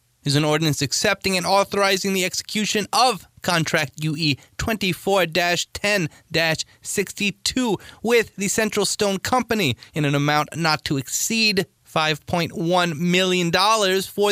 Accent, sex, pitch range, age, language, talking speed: American, male, 130-190 Hz, 30-49, English, 115 wpm